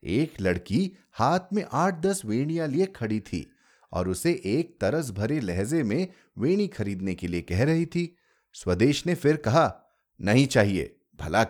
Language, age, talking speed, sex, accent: Hindi, 30-49, 160 wpm, male, native